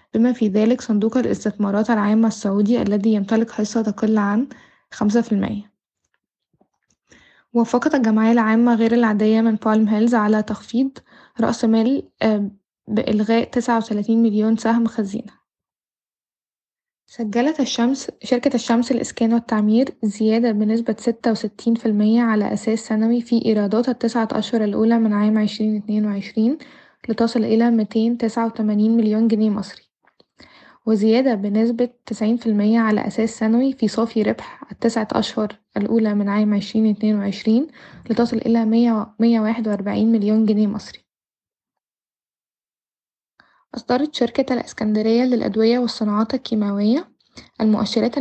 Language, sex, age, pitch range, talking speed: Arabic, female, 10-29, 215-235 Hz, 115 wpm